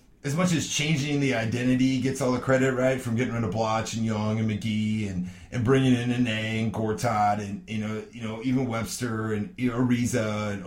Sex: male